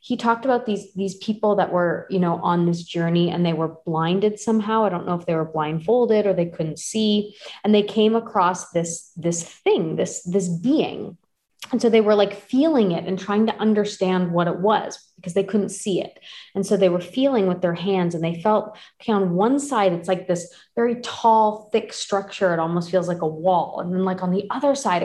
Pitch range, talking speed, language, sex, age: 185-235 Hz, 225 wpm, English, female, 30-49